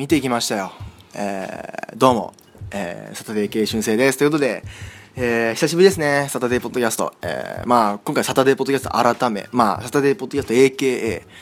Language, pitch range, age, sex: Japanese, 105-140 Hz, 20-39, male